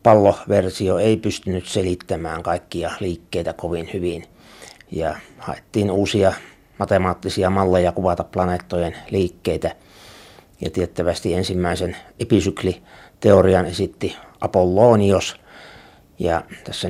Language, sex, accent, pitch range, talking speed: Finnish, male, native, 85-100 Hz, 85 wpm